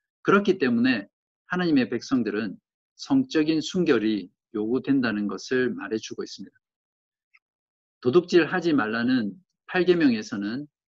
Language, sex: Korean, male